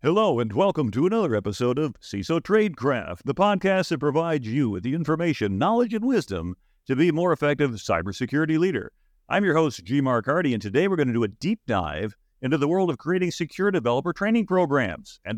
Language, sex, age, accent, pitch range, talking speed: English, male, 50-69, American, 110-165 Hz, 205 wpm